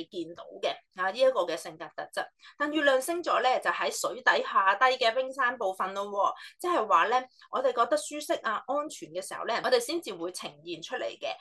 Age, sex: 20-39, female